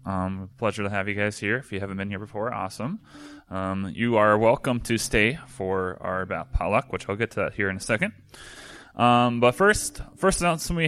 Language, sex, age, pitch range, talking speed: English, male, 20-39, 100-130 Hz, 215 wpm